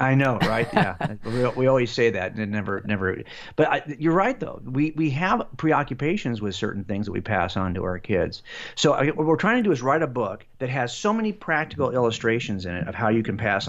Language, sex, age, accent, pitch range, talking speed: English, male, 40-59, American, 115-160 Hz, 245 wpm